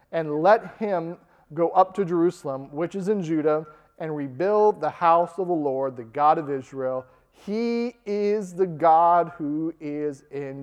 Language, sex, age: English, male, 40-59